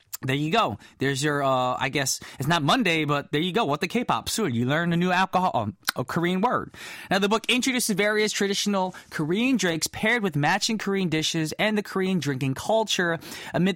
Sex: male